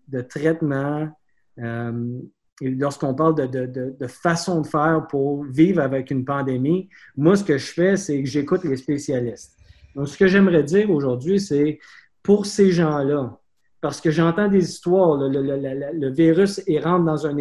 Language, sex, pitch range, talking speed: French, male, 135-180 Hz, 185 wpm